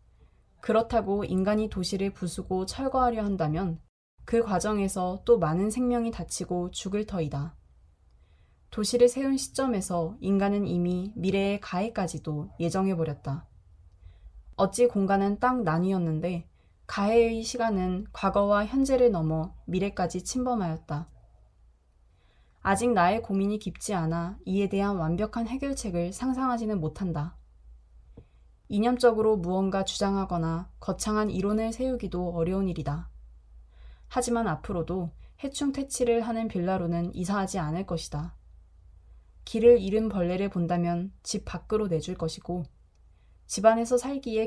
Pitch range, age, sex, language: 160-220 Hz, 20-39, female, Korean